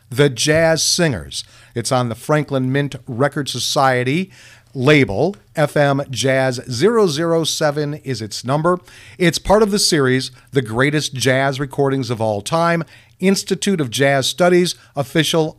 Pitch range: 120-165 Hz